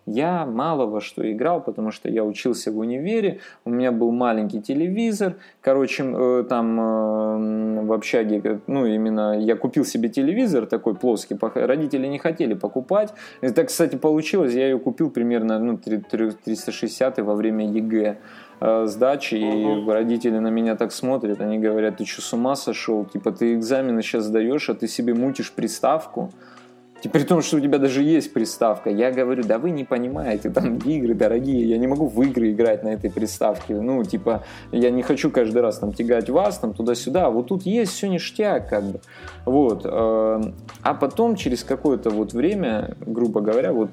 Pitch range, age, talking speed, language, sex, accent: 110-135 Hz, 20-39, 165 wpm, Russian, male, native